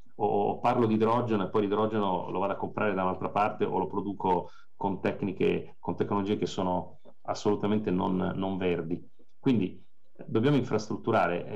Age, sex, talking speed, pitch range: 40-59, male, 155 wpm, 90-110 Hz